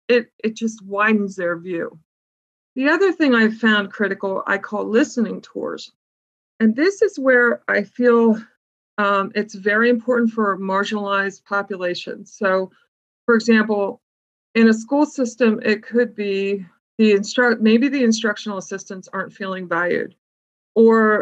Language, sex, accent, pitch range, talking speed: English, female, American, 195-240 Hz, 140 wpm